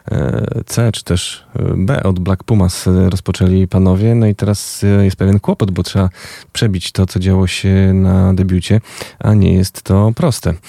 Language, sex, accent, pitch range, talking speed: Polish, male, native, 95-110 Hz, 165 wpm